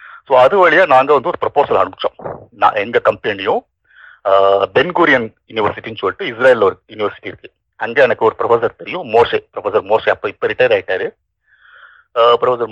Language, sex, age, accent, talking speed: Tamil, male, 50-69, native, 145 wpm